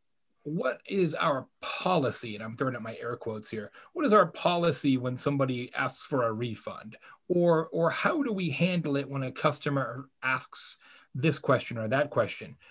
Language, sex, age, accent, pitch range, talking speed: English, male, 30-49, American, 130-170 Hz, 180 wpm